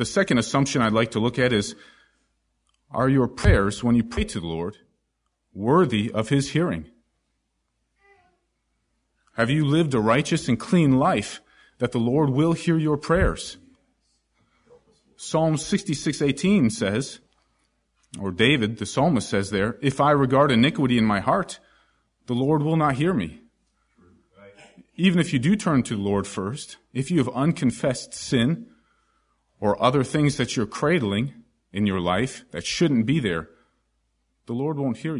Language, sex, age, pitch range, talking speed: English, male, 40-59, 105-150 Hz, 155 wpm